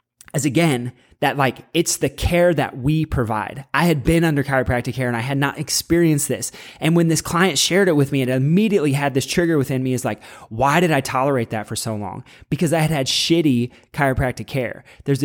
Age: 20-39